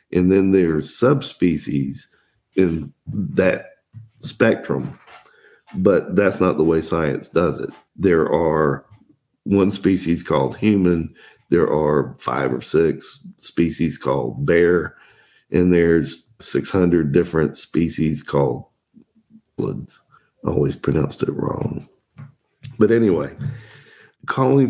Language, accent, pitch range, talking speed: English, American, 85-110 Hz, 105 wpm